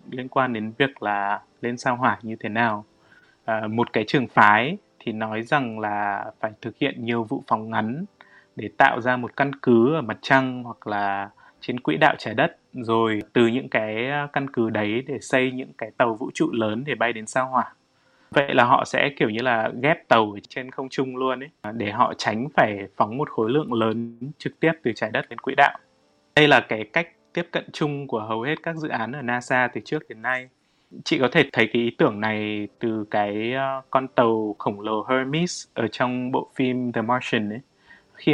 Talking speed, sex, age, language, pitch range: 215 wpm, male, 20-39, Vietnamese, 110-135 Hz